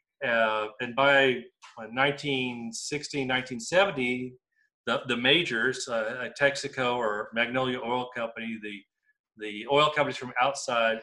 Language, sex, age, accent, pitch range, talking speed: English, male, 40-59, American, 120-145 Hz, 115 wpm